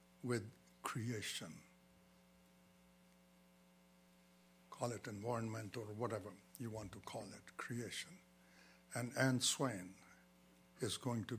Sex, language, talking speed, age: male, English, 100 wpm, 60-79